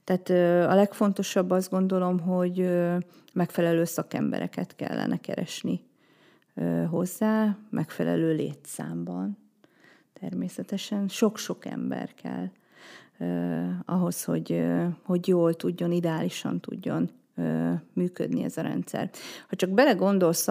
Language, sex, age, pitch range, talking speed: Hungarian, female, 40-59, 160-195 Hz, 90 wpm